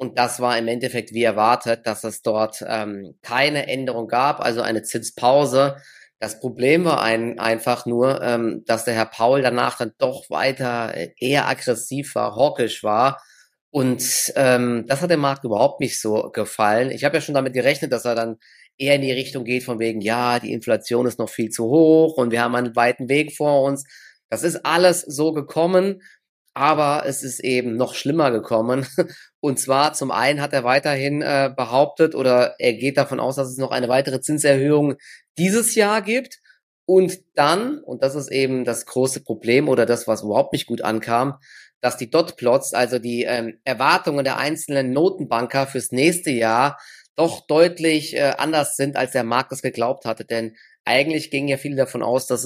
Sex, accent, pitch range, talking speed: male, German, 120-145 Hz, 185 wpm